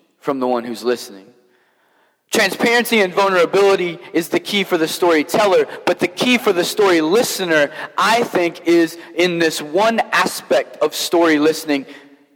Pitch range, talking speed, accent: 145-195 Hz, 150 wpm, American